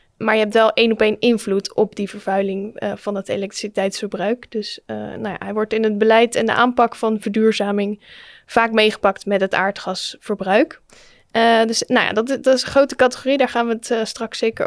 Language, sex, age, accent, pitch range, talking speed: Dutch, female, 10-29, Dutch, 210-245 Hz, 210 wpm